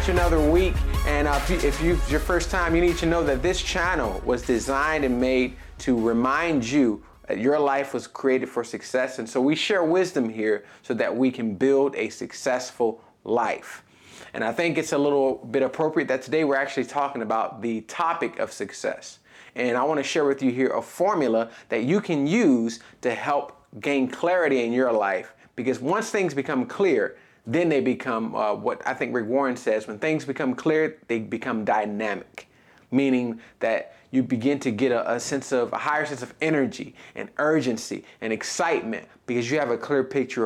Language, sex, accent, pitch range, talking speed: English, male, American, 120-155 Hz, 195 wpm